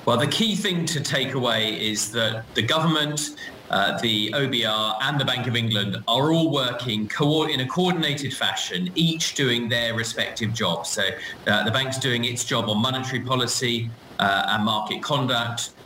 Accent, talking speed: British, 170 wpm